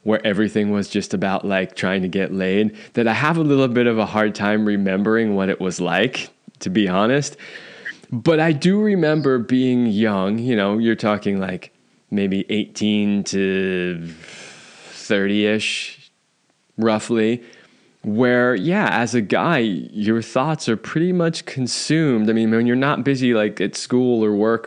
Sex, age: male, 20-39